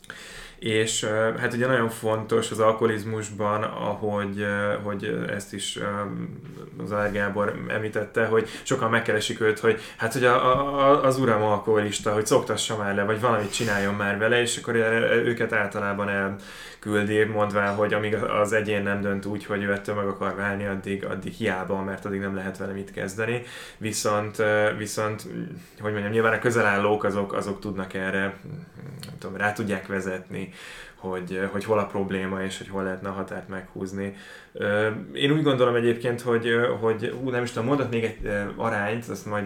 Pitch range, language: 100-115 Hz, Hungarian